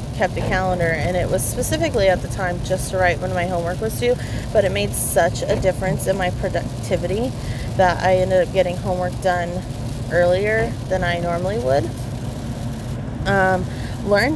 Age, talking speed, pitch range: 20-39, 170 wpm, 120-175 Hz